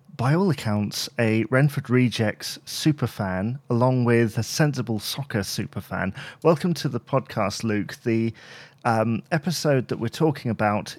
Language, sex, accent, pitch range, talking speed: English, male, British, 110-145 Hz, 135 wpm